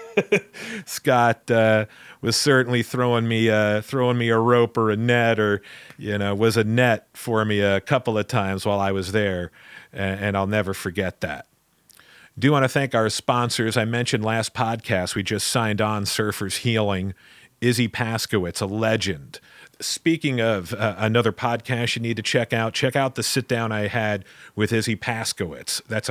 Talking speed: 175 wpm